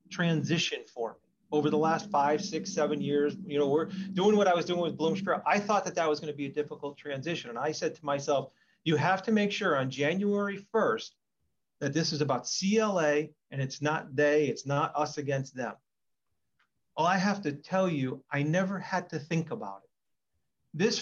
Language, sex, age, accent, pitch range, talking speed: English, male, 40-59, American, 145-180 Hz, 205 wpm